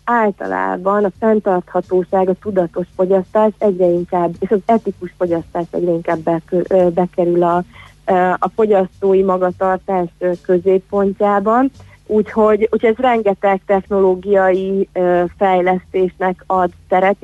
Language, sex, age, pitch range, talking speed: Hungarian, female, 30-49, 180-195 Hz, 95 wpm